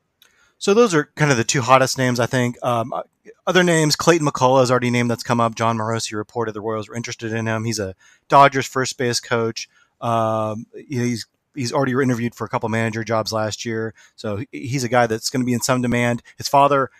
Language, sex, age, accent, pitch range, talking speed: English, male, 30-49, American, 115-135 Hz, 220 wpm